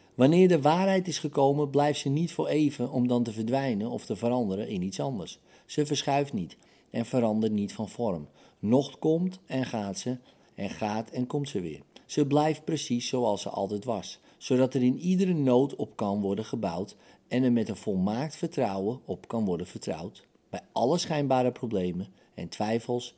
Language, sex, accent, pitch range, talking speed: Dutch, male, Dutch, 110-145 Hz, 185 wpm